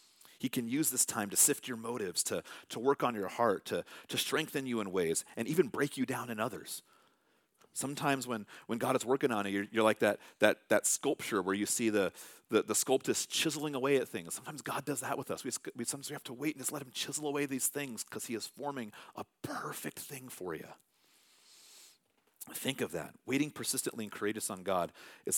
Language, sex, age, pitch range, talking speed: English, male, 40-59, 110-145 Hz, 220 wpm